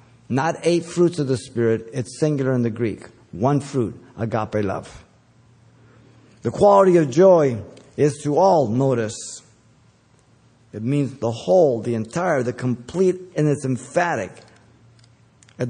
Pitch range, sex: 115-145 Hz, male